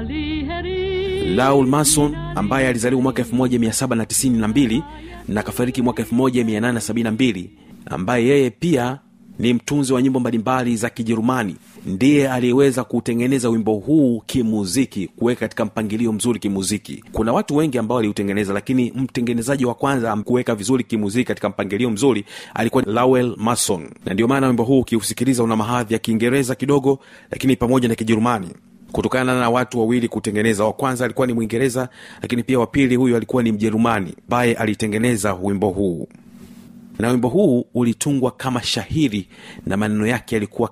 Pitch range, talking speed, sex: 110-130 Hz, 145 wpm, male